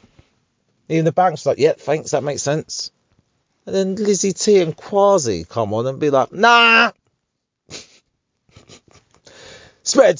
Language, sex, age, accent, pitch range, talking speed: English, male, 30-49, British, 105-145 Hz, 130 wpm